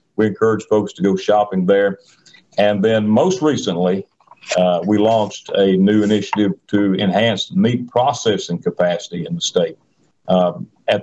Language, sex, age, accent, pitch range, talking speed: English, male, 50-69, American, 95-125 Hz, 145 wpm